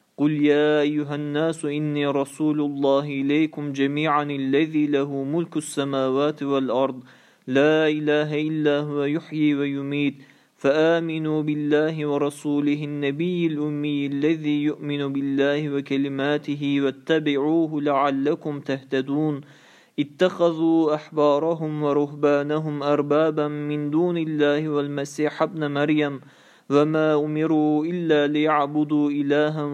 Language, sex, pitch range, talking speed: Turkish, male, 140-155 Hz, 95 wpm